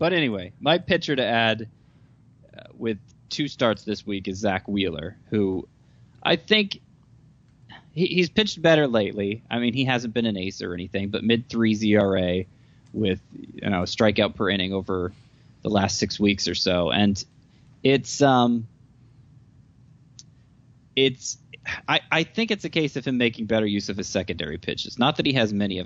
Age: 20-39